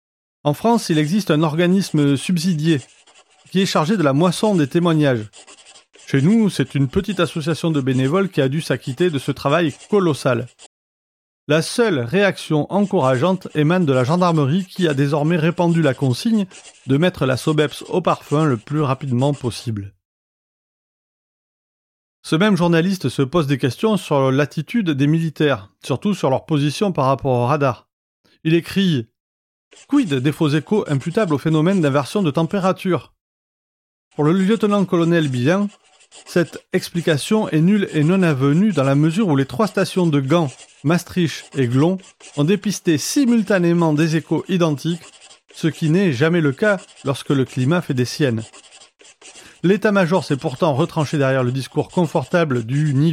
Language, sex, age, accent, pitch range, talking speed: French, male, 30-49, French, 140-180 Hz, 155 wpm